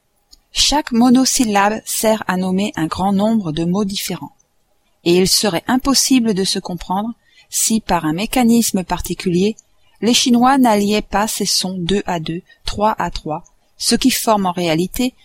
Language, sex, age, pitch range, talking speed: French, female, 40-59, 180-235 Hz, 155 wpm